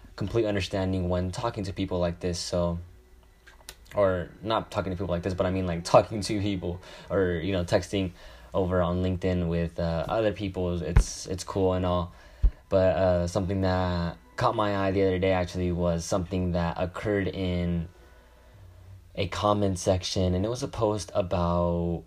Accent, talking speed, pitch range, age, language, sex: American, 175 wpm, 85-100 Hz, 10-29, English, male